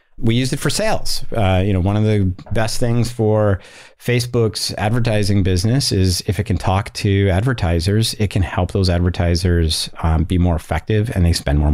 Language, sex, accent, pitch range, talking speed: English, male, American, 90-115 Hz, 190 wpm